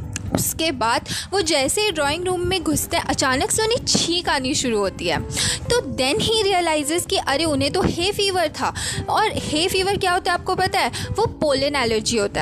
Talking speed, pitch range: 205 wpm, 275-380 Hz